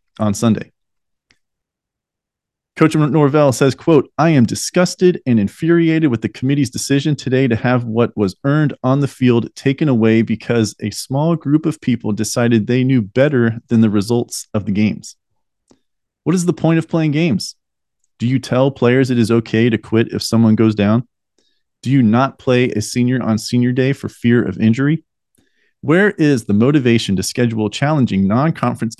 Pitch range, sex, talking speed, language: 110-140 Hz, male, 170 wpm, English